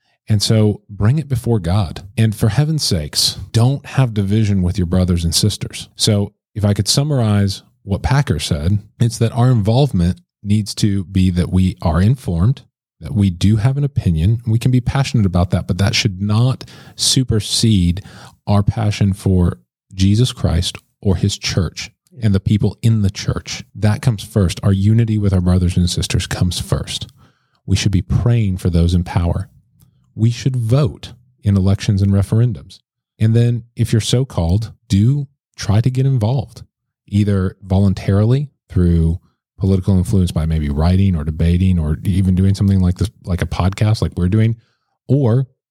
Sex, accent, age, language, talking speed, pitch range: male, American, 40-59, English, 170 wpm, 95-120 Hz